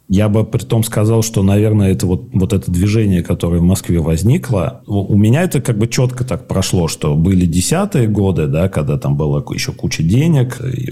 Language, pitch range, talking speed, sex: Russian, 85-125 Hz, 200 wpm, male